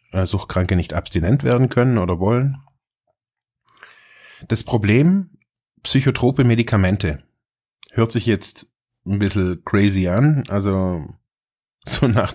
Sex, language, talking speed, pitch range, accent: male, German, 100 wpm, 100-130 Hz, German